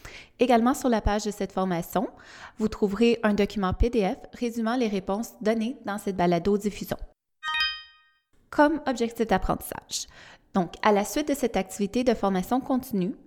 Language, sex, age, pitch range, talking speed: French, female, 20-39, 195-235 Hz, 145 wpm